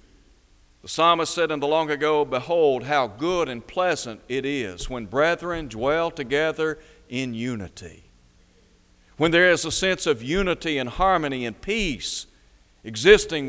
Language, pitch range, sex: English, 115-160 Hz, male